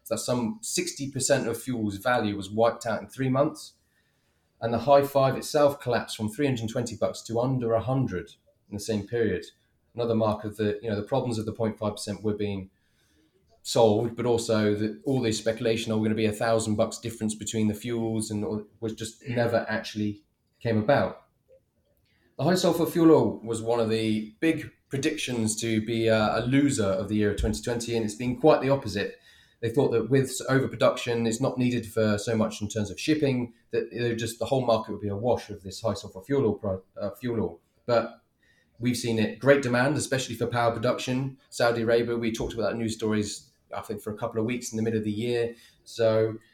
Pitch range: 105-125 Hz